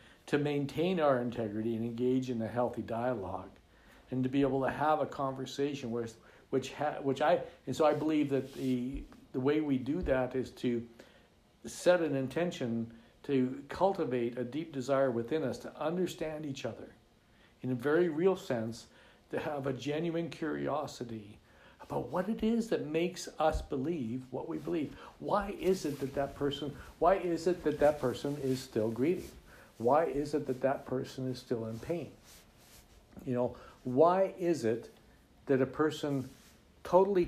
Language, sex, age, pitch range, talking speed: English, male, 60-79, 120-155 Hz, 165 wpm